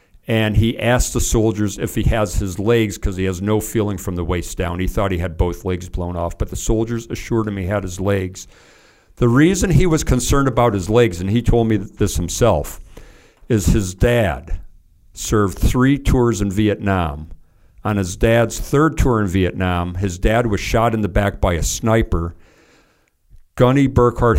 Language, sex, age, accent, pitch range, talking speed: English, male, 50-69, American, 90-115 Hz, 190 wpm